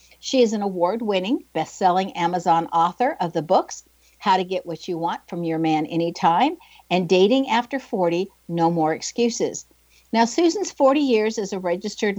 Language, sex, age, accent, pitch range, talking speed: English, female, 60-79, American, 175-245 Hz, 165 wpm